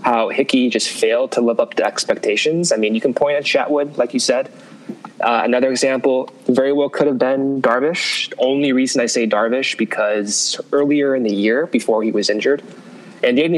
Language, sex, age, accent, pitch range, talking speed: English, male, 20-39, American, 110-140 Hz, 190 wpm